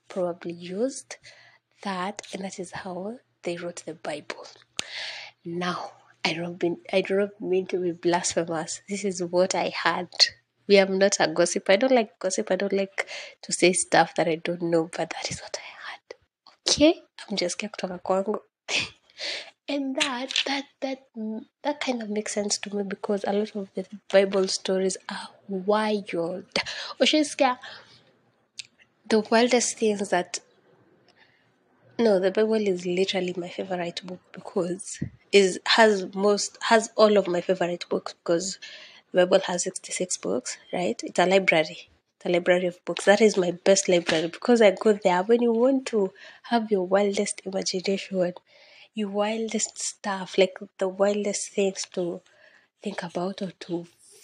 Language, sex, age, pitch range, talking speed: English, female, 20-39, 180-220 Hz, 155 wpm